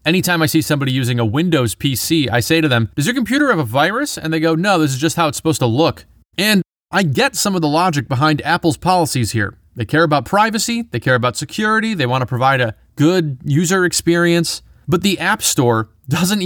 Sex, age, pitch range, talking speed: male, 30-49, 120-170 Hz, 225 wpm